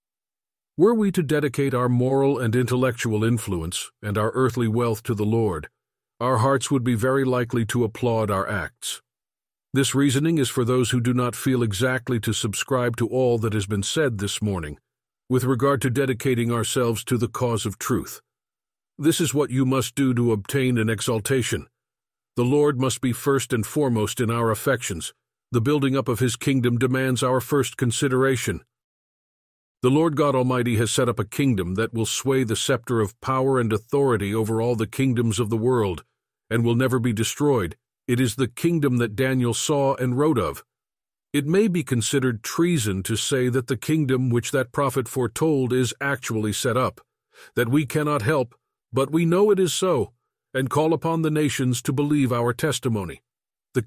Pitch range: 115-140 Hz